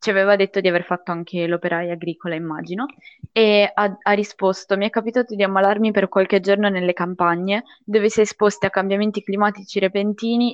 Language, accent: Italian, native